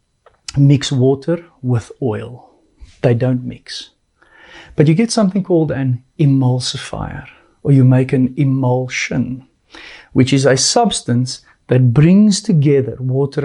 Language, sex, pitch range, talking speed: English, male, 130-170 Hz, 120 wpm